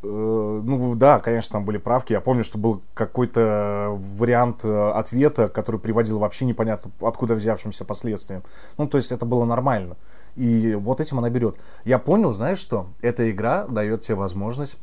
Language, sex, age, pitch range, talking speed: Russian, male, 30-49, 105-120 Hz, 160 wpm